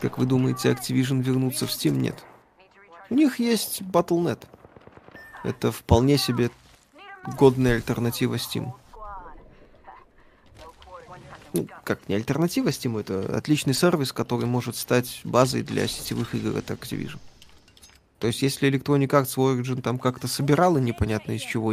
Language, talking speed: Russian, 130 wpm